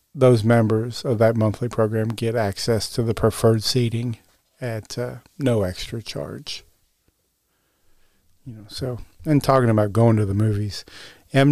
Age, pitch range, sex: 40-59, 110-125 Hz, male